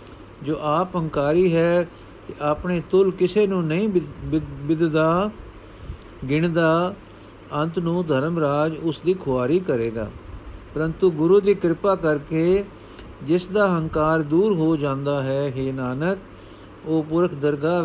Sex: male